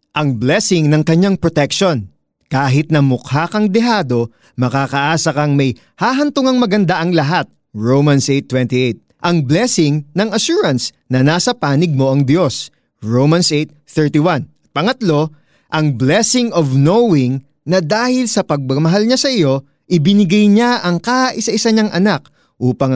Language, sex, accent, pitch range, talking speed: Filipino, male, native, 130-175 Hz, 130 wpm